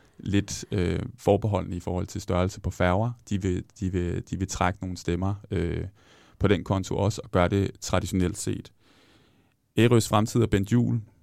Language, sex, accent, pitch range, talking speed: Danish, male, native, 90-110 Hz, 175 wpm